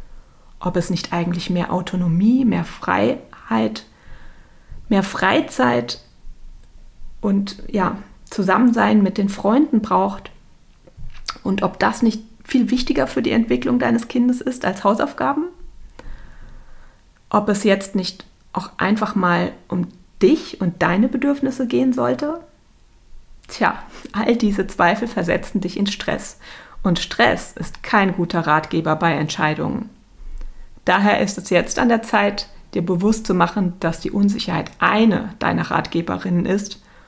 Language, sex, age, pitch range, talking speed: German, female, 30-49, 180-225 Hz, 130 wpm